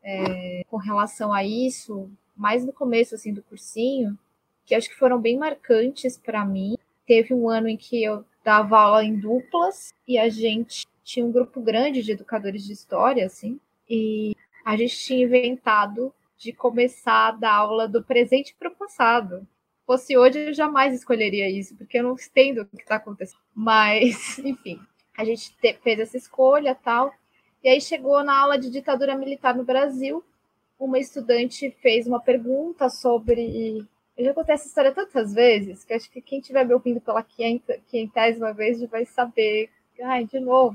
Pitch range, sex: 220-260 Hz, female